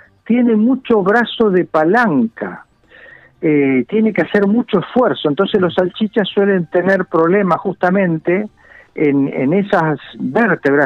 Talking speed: 120 wpm